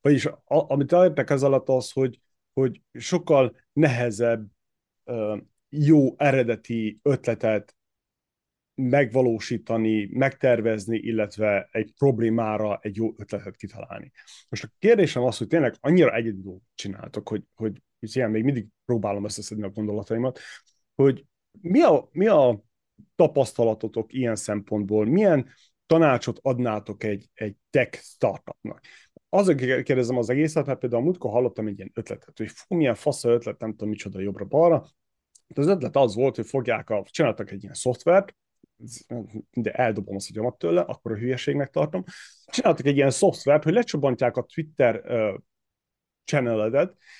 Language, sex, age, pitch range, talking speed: Hungarian, male, 30-49, 110-140 Hz, 130 wpm